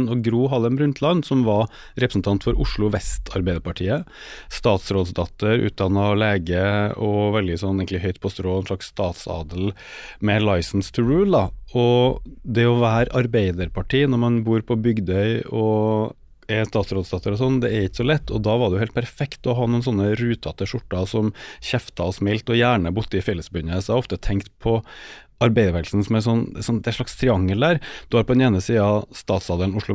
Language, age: English, 30-49